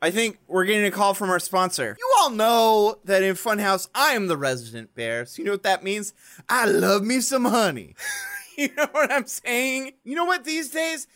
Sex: male